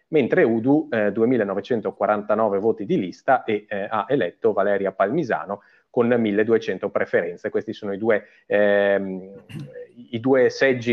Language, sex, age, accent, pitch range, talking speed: Italian, male, 30-49, native, 100-125 Hz, 130 wpm